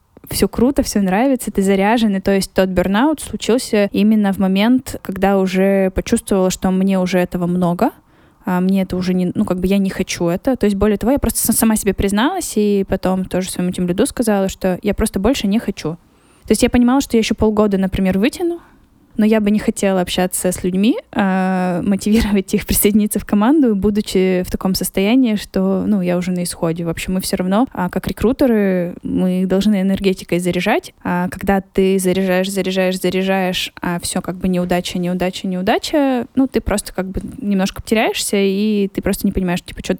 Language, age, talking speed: Russian, 10-29, 190 wpm